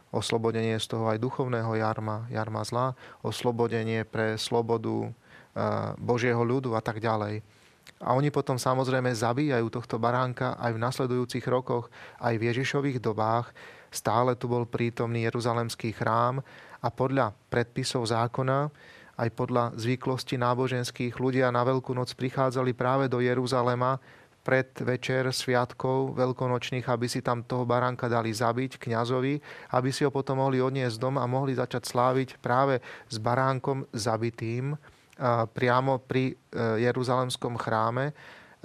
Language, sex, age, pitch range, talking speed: Slovak, male, 30-49, 115-130 Hz, 130 wpm